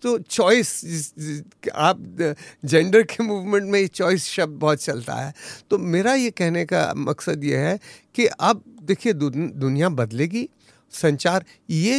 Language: English